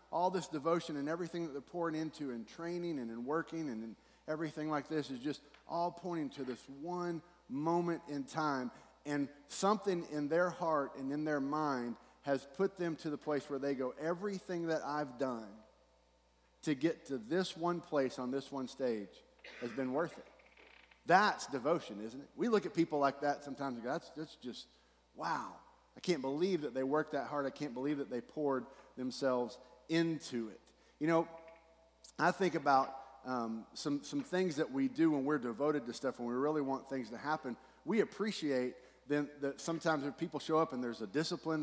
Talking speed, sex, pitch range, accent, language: 195 wpm, male, 135-165 Hz, American, English